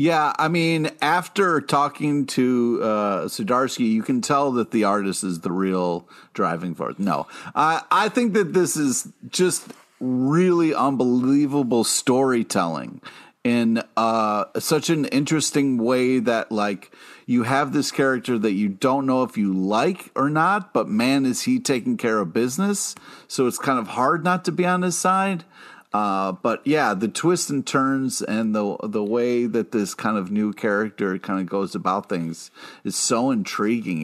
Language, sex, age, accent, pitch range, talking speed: English, male, 40-59, American, 100-150 Hz, 165 wpm